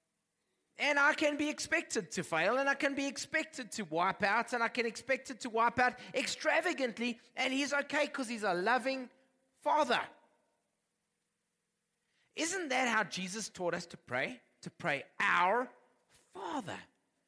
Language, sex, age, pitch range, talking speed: English, male, 30-49, 185-265 Hz, 155 wpm